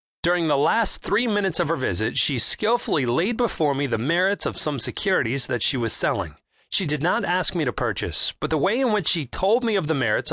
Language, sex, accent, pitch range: English, male, American, 130-190 Hz